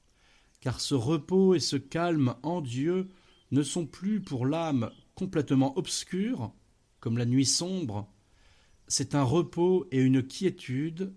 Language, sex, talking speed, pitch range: French, male, 135 wpm, 115-170 Hz